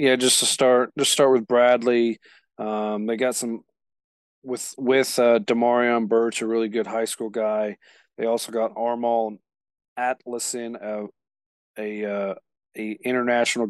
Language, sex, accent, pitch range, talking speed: English, male, American, 110-120 Hz, 145 wpm